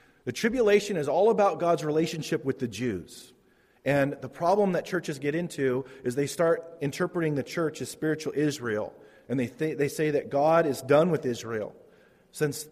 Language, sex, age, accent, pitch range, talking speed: English, male, 40-59, American, 135-165 Hz, 180 wpm